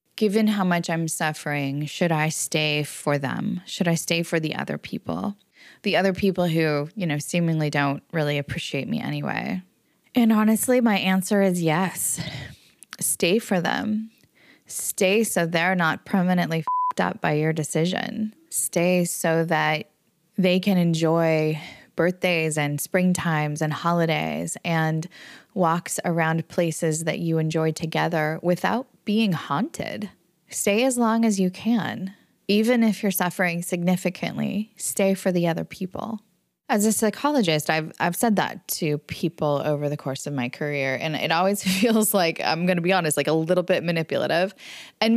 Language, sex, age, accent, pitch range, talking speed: English, female, 20-39, American, 155-200 Hz, 155 wpm